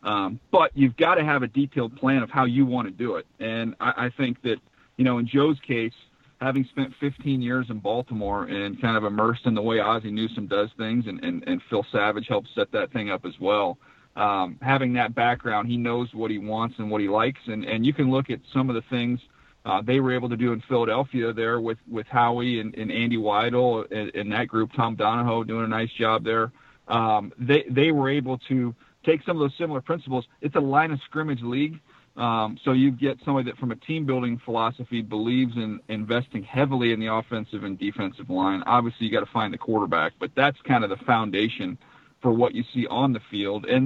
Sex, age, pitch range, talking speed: male, 40-59, 115-135 Hz, 225 wpm